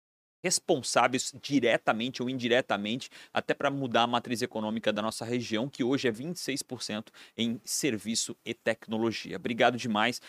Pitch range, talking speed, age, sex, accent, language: 120-160 Hz, 135 wpm, 30-49, male, Brazilian, Portuguese